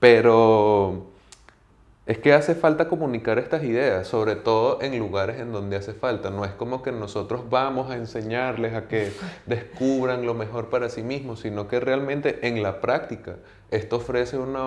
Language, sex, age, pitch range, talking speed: Spanish, male, 20-39, 105-130 Hz, 170 wpm